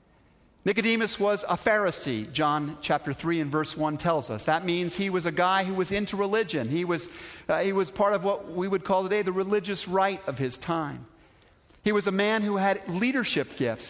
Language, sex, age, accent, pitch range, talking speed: English, male, 50-69, American, 140-195 Hz, 205 wpm